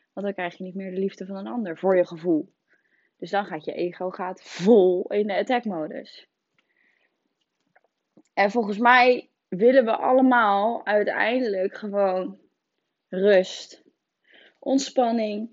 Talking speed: 135 wpm